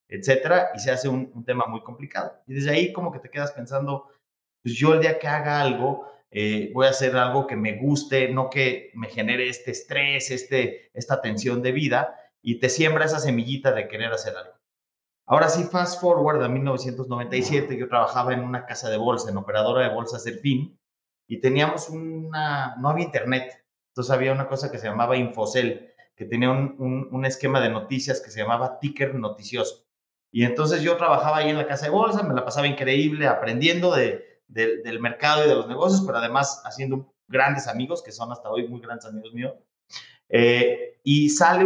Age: 30-49